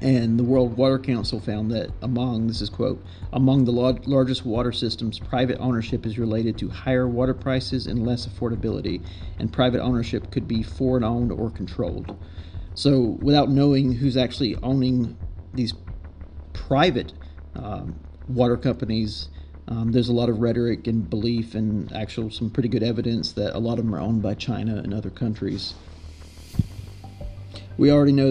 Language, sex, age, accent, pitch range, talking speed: English, male, 40-59, American, 100-125 Hz, 160 wpm